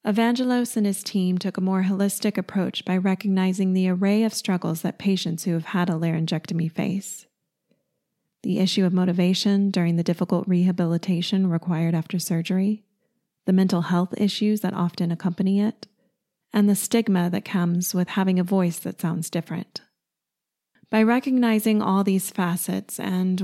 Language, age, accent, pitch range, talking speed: English, 30-49, American, 180-215 Hz, 155 wpm